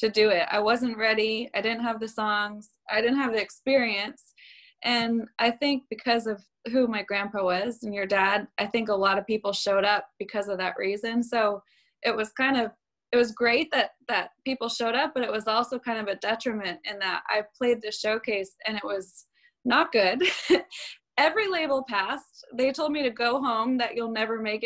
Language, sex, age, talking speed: English, female, 20-39, 205 wpm